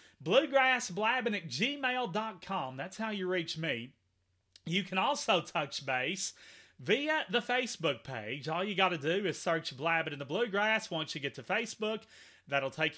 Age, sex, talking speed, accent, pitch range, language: 30-49, male, 160 wpm, American, 160-225 Hz, English